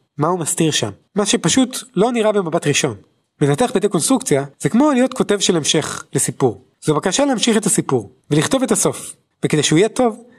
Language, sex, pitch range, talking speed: Hebrew, male, 145-210 Hz, 180 wpm